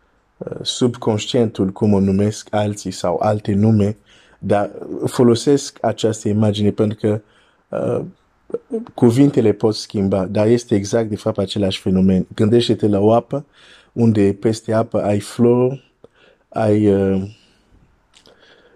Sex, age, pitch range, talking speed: male, 50-69, 100-115 Hz, 120 wpm